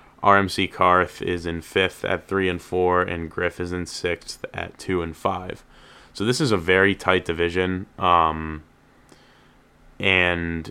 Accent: American